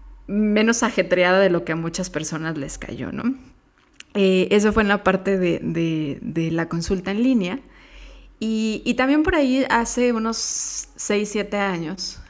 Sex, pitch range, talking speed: female, 175-220 Hz, 165 wpm